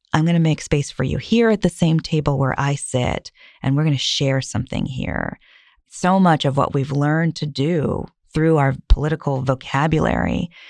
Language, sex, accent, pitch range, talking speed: English, female, American, 130-150 Hz, 190 wpm